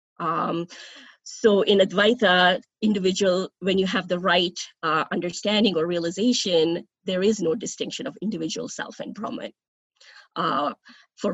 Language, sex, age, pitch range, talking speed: English, female, 20-39, 180-220 Hz, 130 wpm